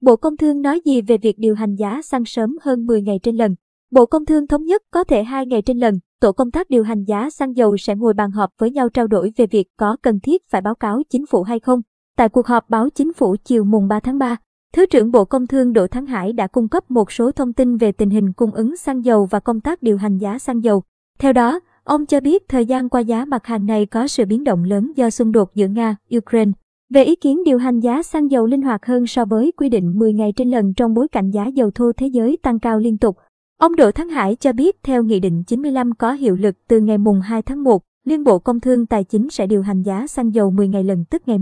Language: Vietnamese